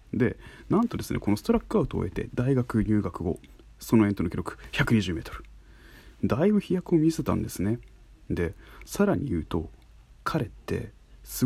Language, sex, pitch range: Japanese, male, 95-130 Hz